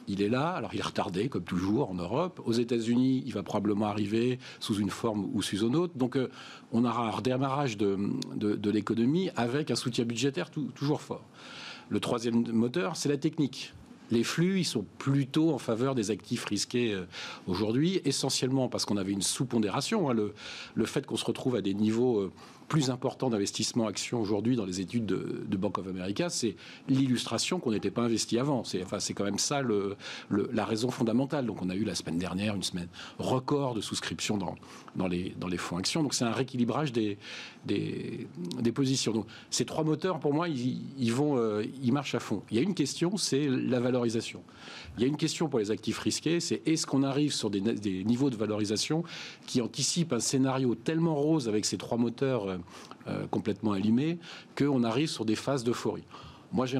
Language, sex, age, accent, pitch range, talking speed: French, male, 40-59, French, 105-140 Hz, 205 wpm